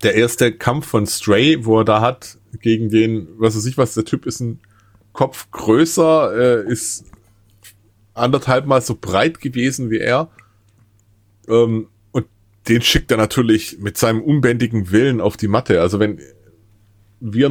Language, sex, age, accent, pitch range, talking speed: German, male, 30-49, German, 100-120 Hz, 150 wpm